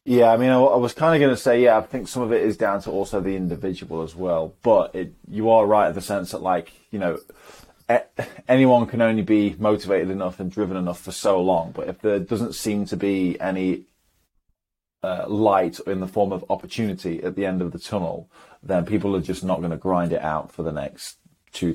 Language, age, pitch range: English, 20-39, 90-110 Hz